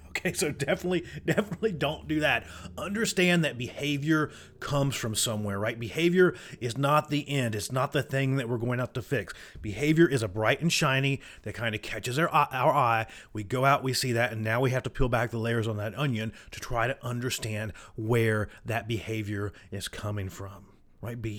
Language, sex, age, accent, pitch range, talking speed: English, male, 30-49, American, 110-140 Hz, 200 wpm